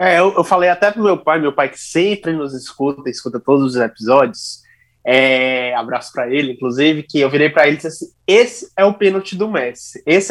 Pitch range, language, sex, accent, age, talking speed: 145-185 Hz, Portuguese, male, Brazilian, 20-39, 220 wpm